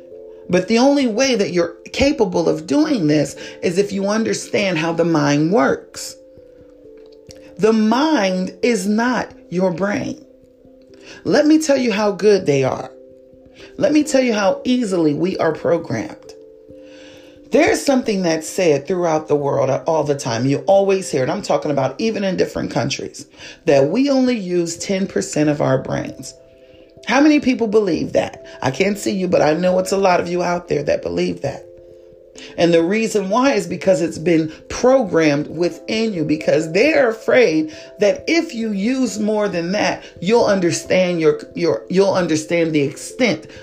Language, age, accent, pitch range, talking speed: English, 40-59, American, 150-235 Hz, 165 wpm